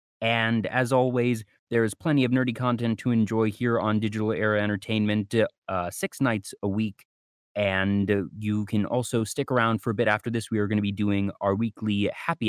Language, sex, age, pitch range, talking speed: English, male, 30-49, 100-120 Hz, 195 wpm